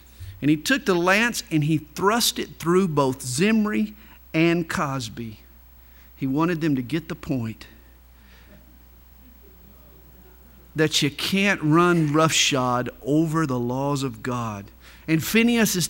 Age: 50-69